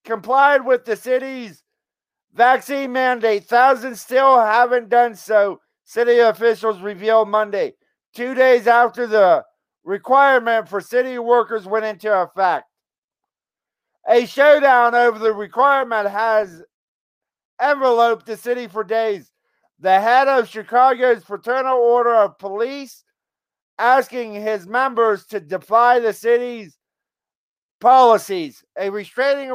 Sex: male